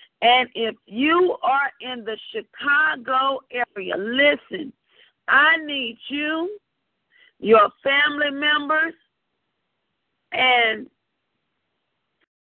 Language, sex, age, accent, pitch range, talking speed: English, female, 40-59, American, 240-300 Hz, 75 wpm